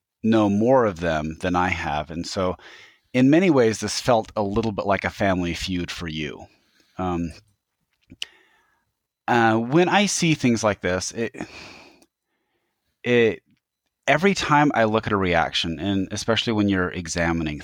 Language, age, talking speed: English, 30-49, 155 wpm